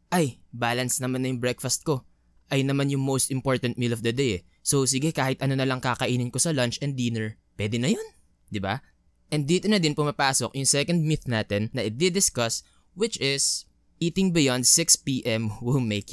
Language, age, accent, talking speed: English, 20-39, Filipino, 190 wpm